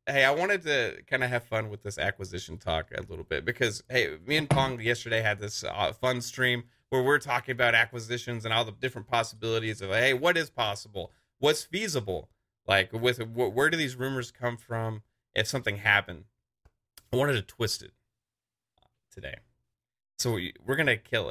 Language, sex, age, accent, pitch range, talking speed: English, male, 30-49, American, 110-130 Hz, 180 wpm